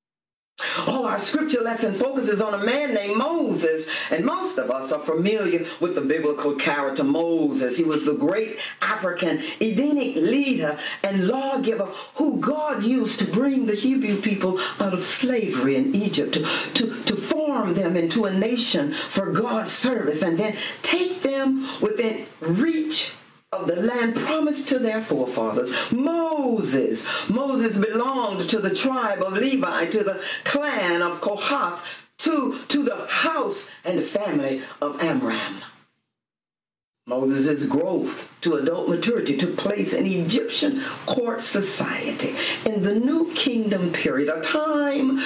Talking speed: 140 wpm